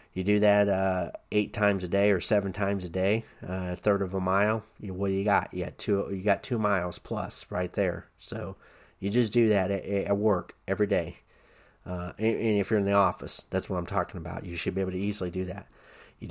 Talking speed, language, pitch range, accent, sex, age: 245 wpm, English, 90-105 Hz, American, male, 30-49